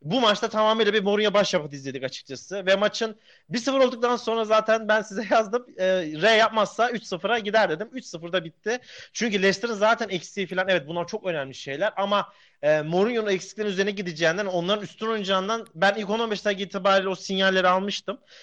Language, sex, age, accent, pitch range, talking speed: Turkish, male, 40-59, native, 180-220 Hz, 170 wpm